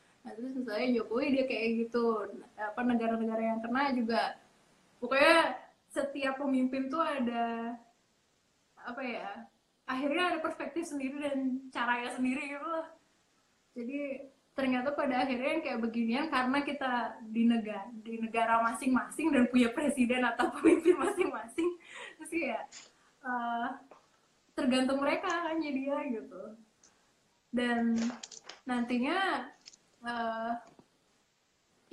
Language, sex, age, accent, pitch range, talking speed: Indonesian, female, 20-39, native, 230-295 Hz, 110 wpm